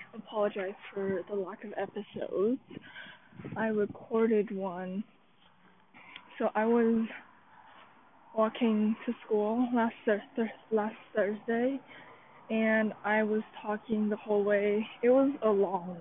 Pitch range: 205-245 Hz